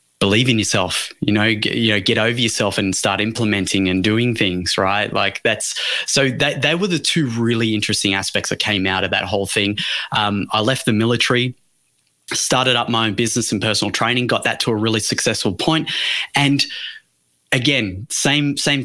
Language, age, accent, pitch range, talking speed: English, 20-39, Australian, 105-130 Hz, 190 wpm